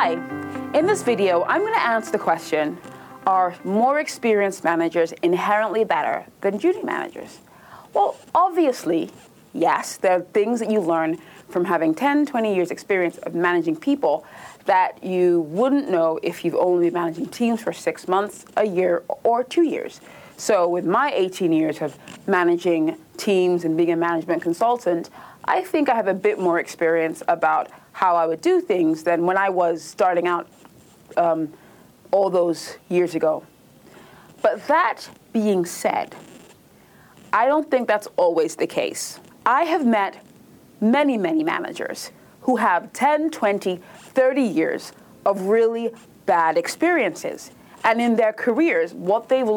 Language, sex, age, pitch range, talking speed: English, female, 30-49, 170-260 Hz, 155 wpm